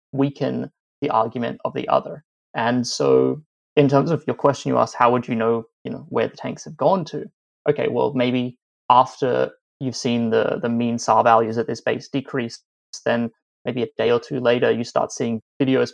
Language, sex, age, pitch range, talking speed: English, male, 20-39, 115-130 Hz, 200 wpm